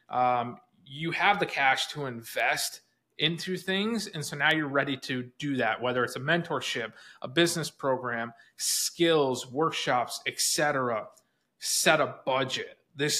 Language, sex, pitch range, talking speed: English, male, 125-165 Hz, 145 wpm